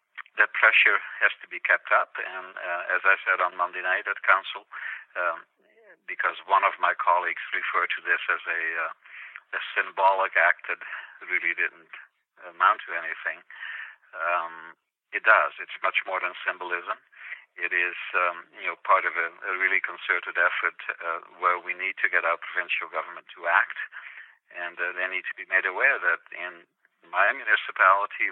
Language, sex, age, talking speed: English, male, 50-69, 170 wpm